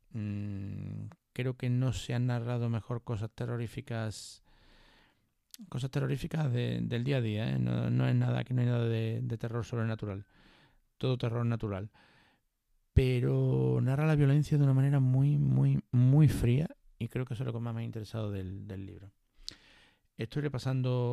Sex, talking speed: male, 170 wpm